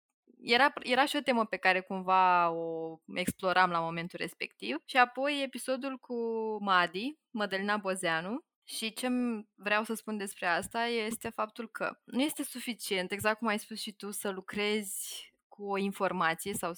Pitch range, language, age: 185-225 Hz, Romanian, 20-39